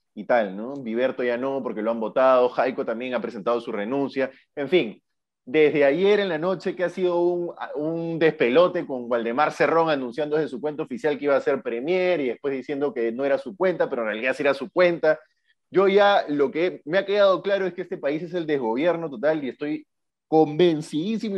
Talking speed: 215 wpm